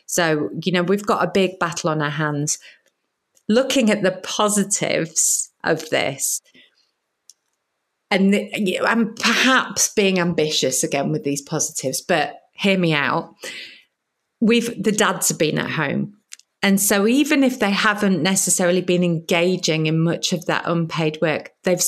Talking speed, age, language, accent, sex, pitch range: 155 wpm, 30-49, English, British, female, 160-200 Hz